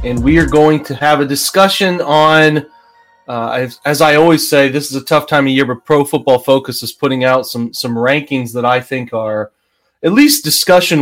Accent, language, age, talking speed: American, English, 30-49, 210 wpm